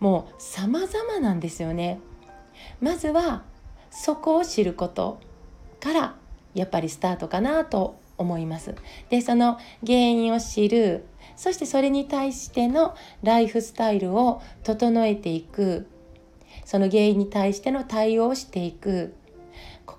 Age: 40-59